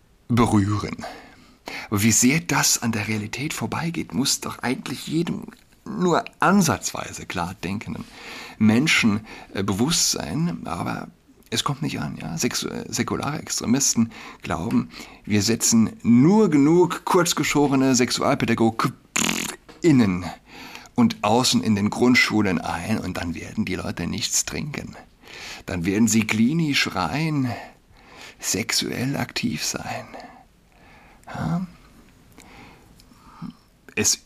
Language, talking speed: German, 105 wpm